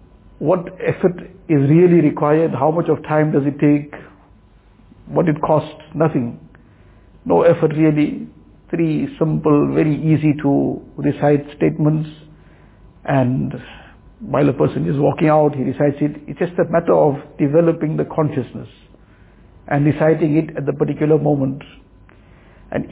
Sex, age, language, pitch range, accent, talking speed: male, 60-79, English, 140-165 Hz, Indian, 135 wpm